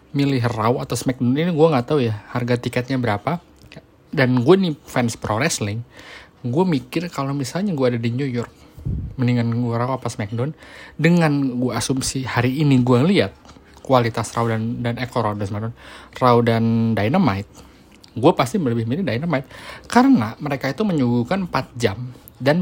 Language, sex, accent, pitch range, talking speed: Indonesian, male, native, 115-140 Hz, 165 wpm